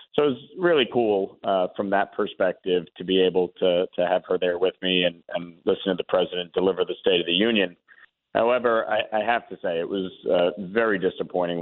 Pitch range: 95-120 Hz